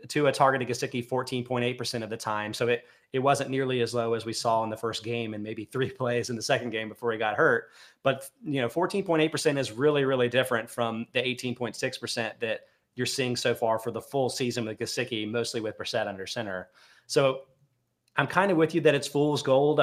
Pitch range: 115-135 Hz